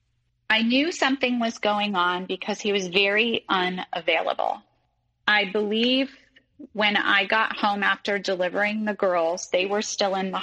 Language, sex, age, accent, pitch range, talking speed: English, female, 30-49, American, 160-210 Hz, 150 wpm